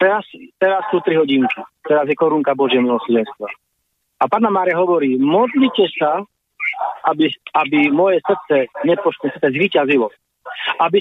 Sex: male